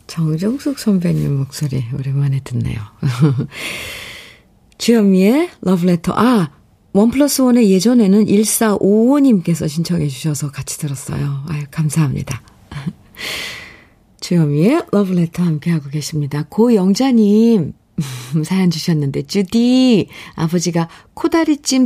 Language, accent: Korean, native